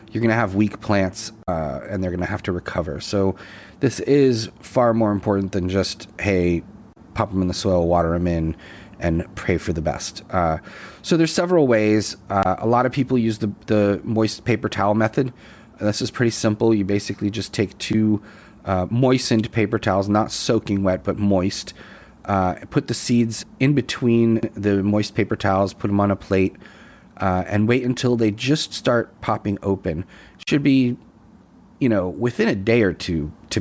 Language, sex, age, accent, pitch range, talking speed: English, male, 30-49, American, 95-115 Hz, 185 wpm